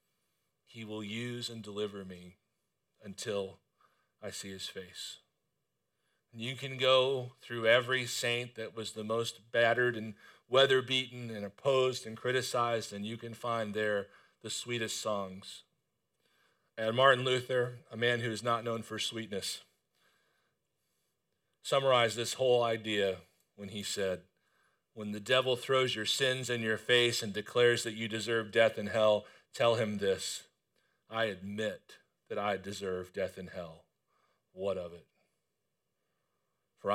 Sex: male